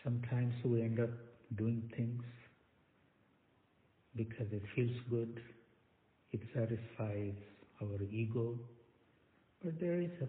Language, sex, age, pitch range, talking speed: English, male, 60-79, 105-120 Hz, 105 wpm